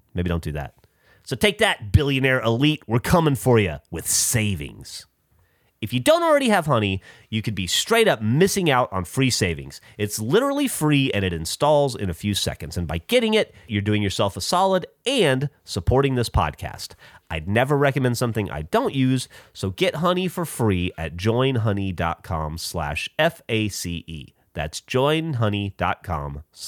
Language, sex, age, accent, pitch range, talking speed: English, male, 30-49, American, 100-165 Hz, 160 wpm